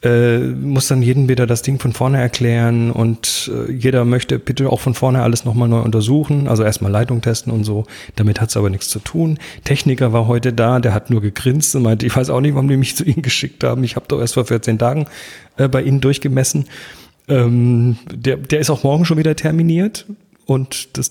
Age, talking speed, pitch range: 40-59, 220 wpm, 115-145 Hz